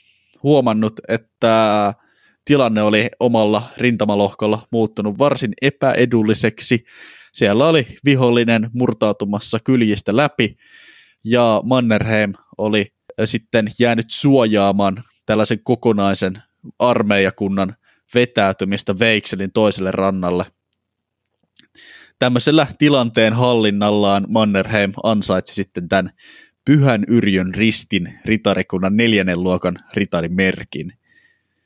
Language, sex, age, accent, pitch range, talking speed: Finnish, male, 20-39, native, 105-120 Hz, 80 wpm